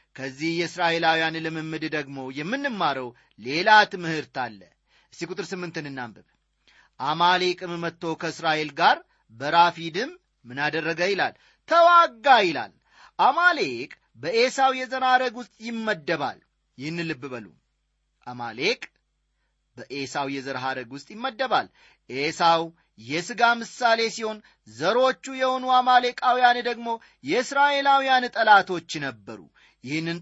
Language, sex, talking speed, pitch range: Amharic, male, 85 wpm, 150-230 Hz